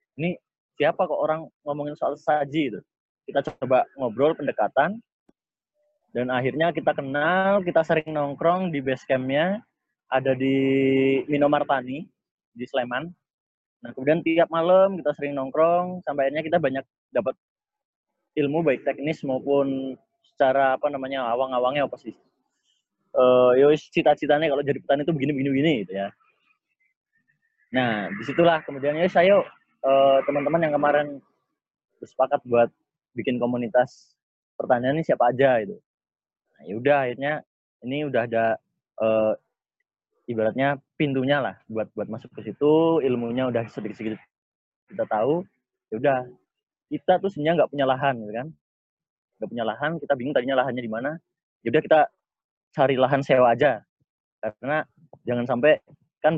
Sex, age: male, 20-39